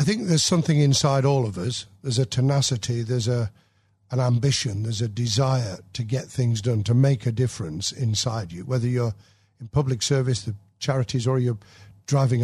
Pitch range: 110-140 Hz